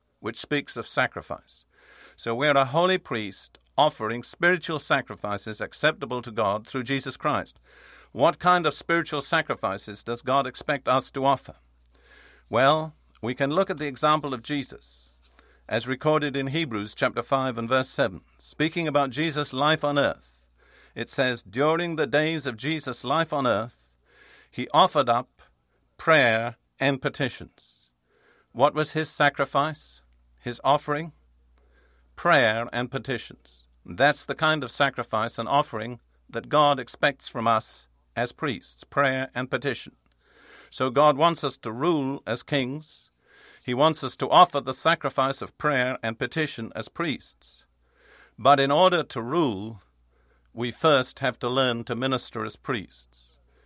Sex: male